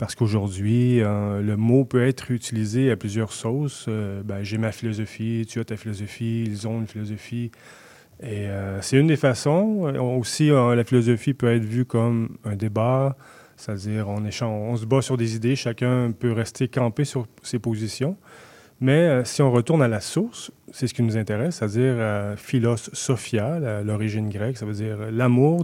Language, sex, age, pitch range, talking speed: French, male, 30-49, 110-130 Hz, 190 wpm